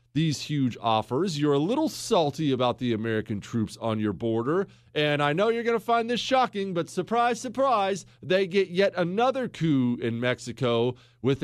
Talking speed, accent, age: 180 wpm, American, 40-59